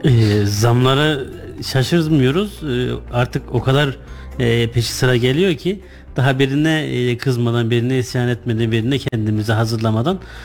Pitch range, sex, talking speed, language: 115-135 Hz, male, 125 wpm, Turkish